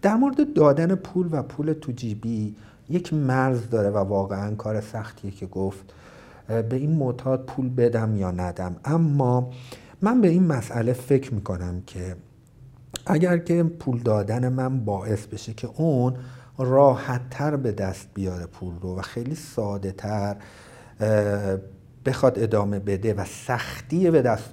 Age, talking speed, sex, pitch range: 50-69, 135 wpm, male, 100-130 Hz